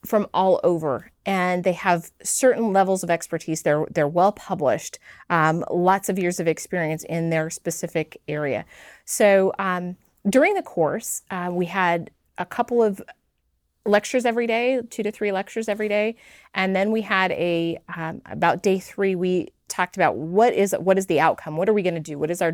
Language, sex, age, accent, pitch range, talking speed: English, female, 30-49, American, 165-200 Hz, 190 wpm